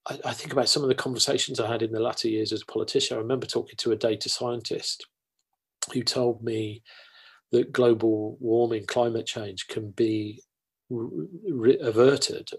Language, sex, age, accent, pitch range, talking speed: English, male, 40-59, British, 110-130 Hz, 160 wpm